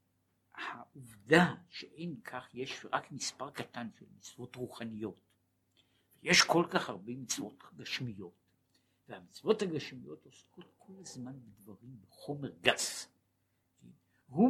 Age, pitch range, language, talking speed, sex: 60-79, 115-180 Hz, Hebrew, 105 wpm, male